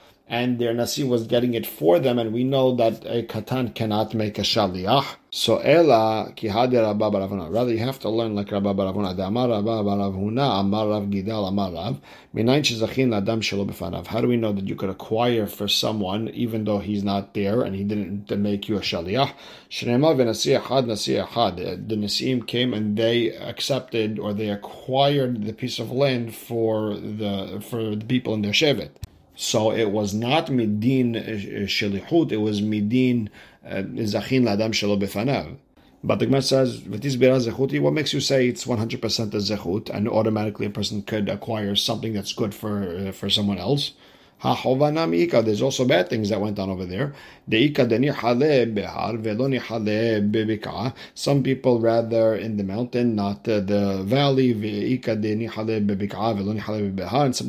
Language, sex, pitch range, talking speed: English, male, 105-125 Hz, 140 wpm